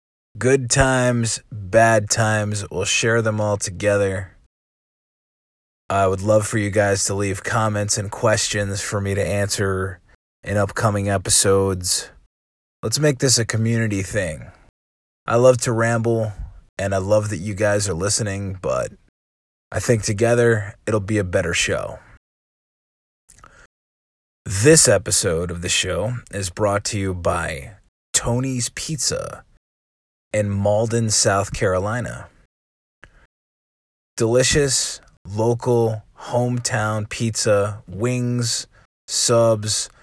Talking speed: 115 wpm